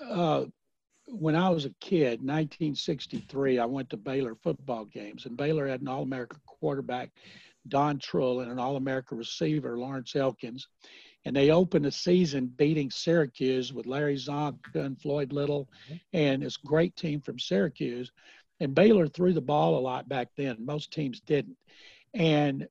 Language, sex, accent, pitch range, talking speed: English, male, American, 135-160 Hz, 155 wpm